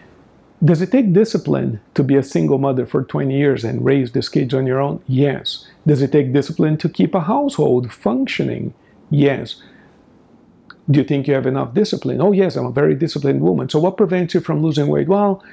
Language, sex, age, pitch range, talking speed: English, male, 50-69, 130-180 Hz, 200 wpm